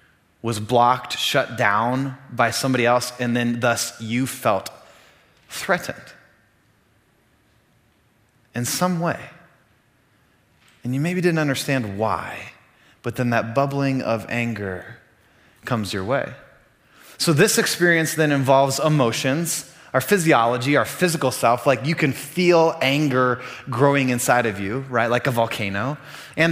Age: 20-39